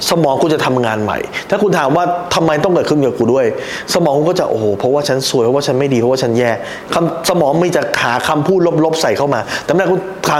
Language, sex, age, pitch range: Thai, male, 20-39, 105-145 Hz